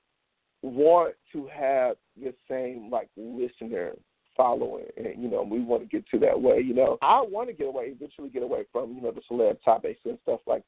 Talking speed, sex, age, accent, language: 210 wpm, male, 40-59, American, English